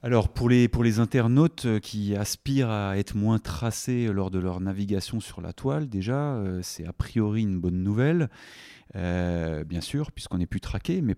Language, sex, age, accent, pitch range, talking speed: French, male, 30-49, French, 100-135 Hz, 185 wpm